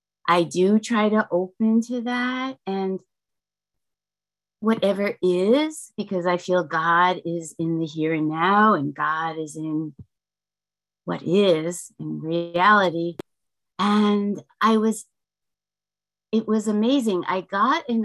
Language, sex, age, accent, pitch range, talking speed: English, female, 30-49, American, 175-220 Hz, 125 wpm